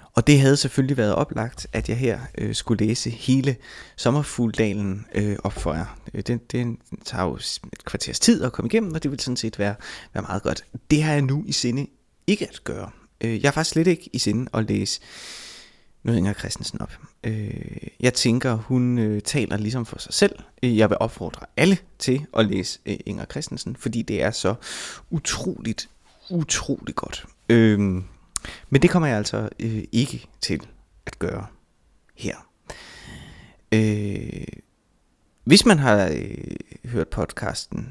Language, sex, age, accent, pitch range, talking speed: Danish, male, 20-39, native, 105-135 Hz, 160 wpm